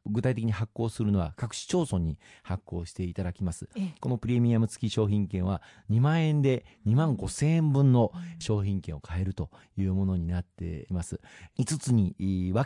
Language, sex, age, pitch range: Japanese, male, 40-59, 95-125 Hz